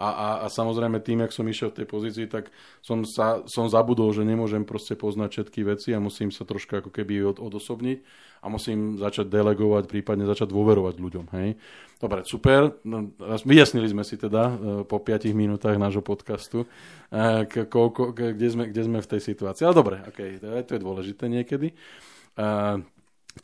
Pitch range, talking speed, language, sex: 105-115 Hz, 190 wpm, Slovak, male